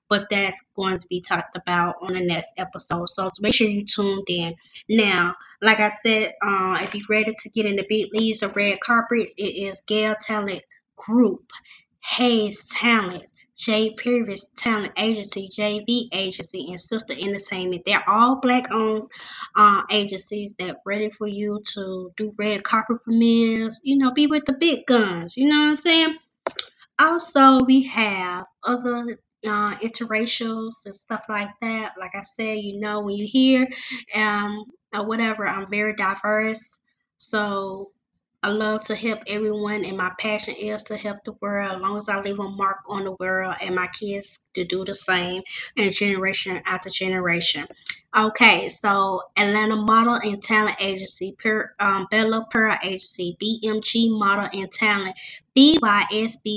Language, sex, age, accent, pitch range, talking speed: English, female, 20-39, American, 195-225 Hz, 160 wpm